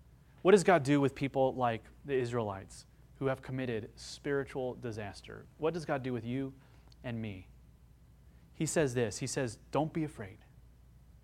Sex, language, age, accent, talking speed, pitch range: male, English, 30-49, American, 160 wpm, 110-150 Hz